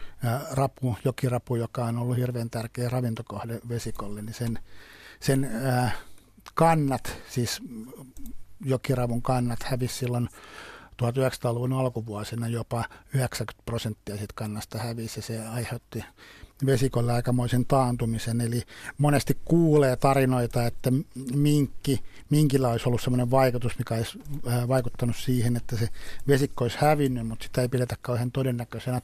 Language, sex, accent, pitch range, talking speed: Finnish, male, native, 115-135 Hz, 120 wpm